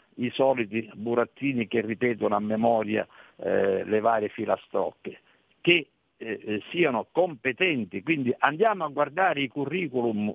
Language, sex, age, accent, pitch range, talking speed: Italian, male, 50-69, native, 115-145 Hz, 120 wpm